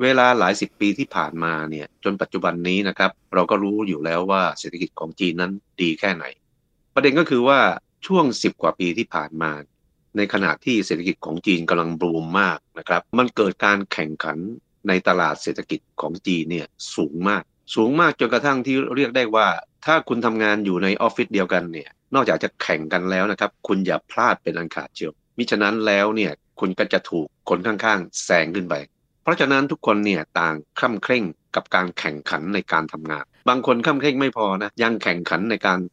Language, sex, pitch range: Thai, male, 90-115 Hz